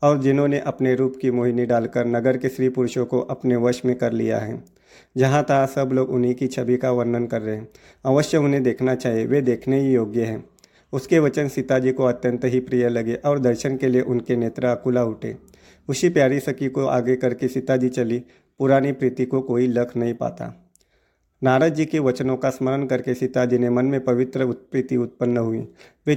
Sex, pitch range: male, 120-135 Hz